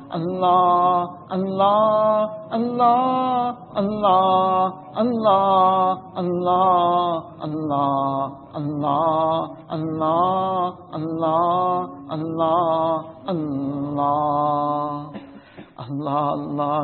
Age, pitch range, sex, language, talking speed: 60-79, 155-190 Hz, male, English, 40 wpm